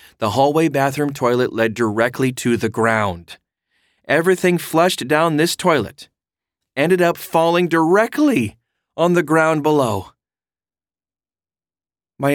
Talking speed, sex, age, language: 110 wpm, male, 40-59, English